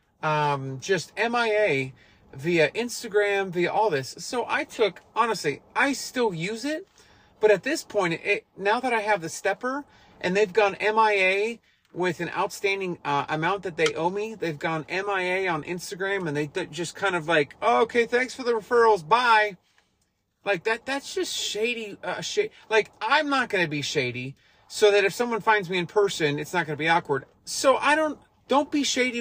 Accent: American